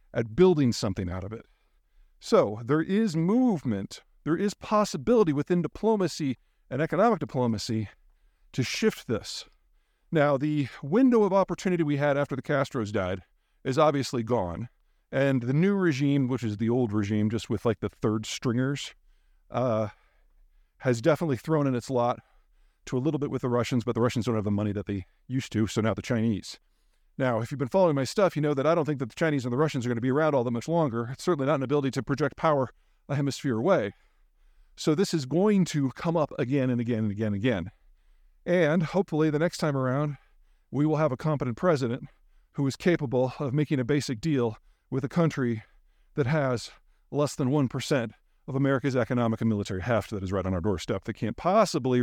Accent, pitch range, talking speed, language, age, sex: American, 115-155 Hz, 200 wpm, English, 50-69, male